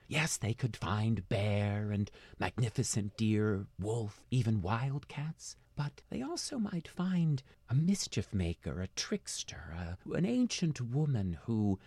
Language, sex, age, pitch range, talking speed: English, male, 40-59, 95-135 Hz, 125 wpm